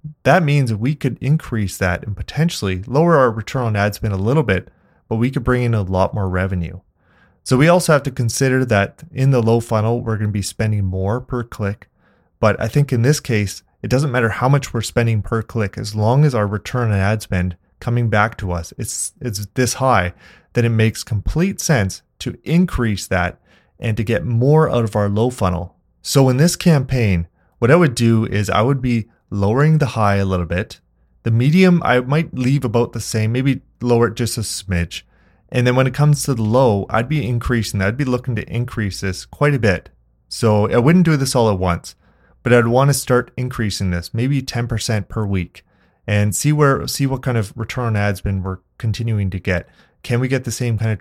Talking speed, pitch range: 220 wpm, 100-130 Hz